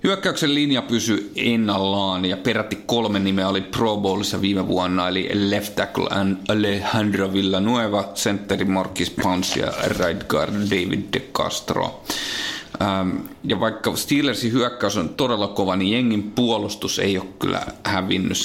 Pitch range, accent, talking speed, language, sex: 95-110 Hz, native, 130 wpm, Finnish, male